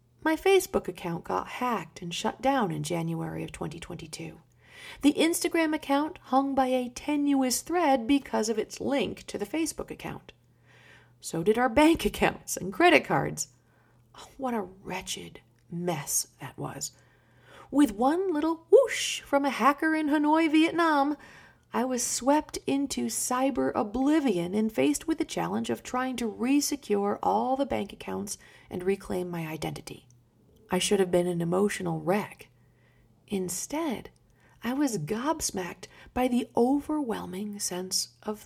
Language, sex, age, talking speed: English, female, 40-59, 140 wpm